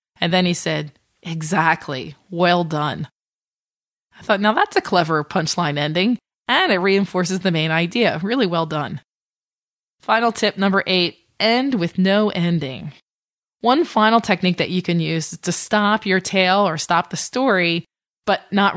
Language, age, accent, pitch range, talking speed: English, 20-39, American, 170-210 Hz, 160 wpm